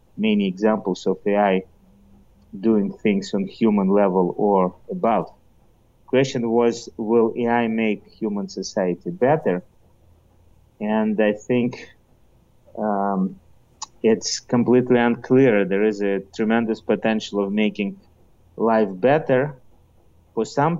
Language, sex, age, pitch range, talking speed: English, male, 30-49, 95-115 Hz, 110 wpm